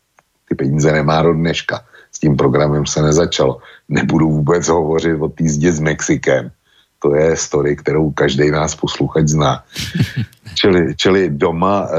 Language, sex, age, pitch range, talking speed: Slovak, male, 60-79, 80-95 Hz, 135 wpm